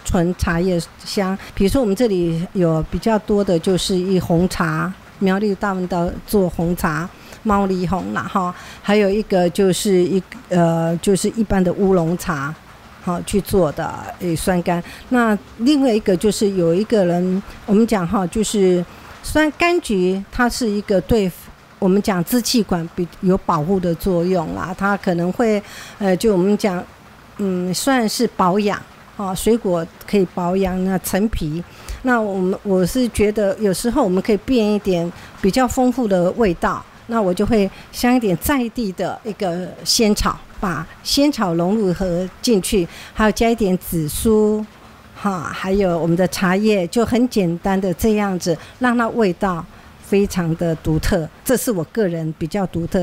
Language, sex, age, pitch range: Chinese, female, 50-69, 180-215 Hz